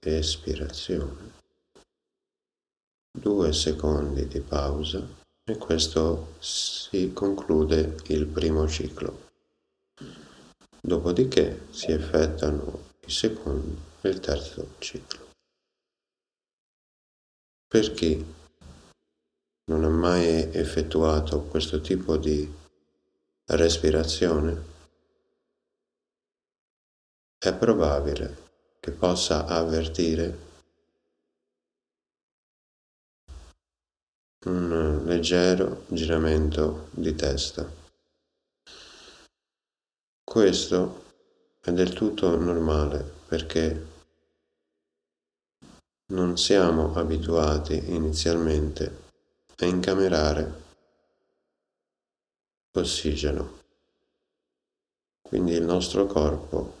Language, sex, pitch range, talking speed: Italian, male, 75-85 Hz, 60 wpm